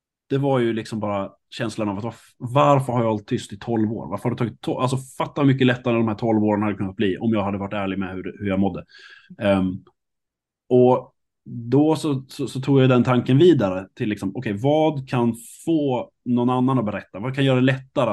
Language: Swedish